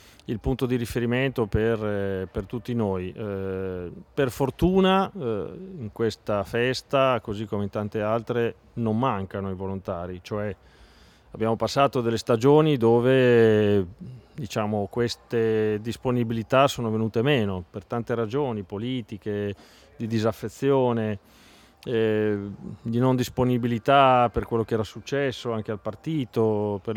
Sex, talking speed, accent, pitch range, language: male, 120 wpm, native, 105-120 Hz, Italian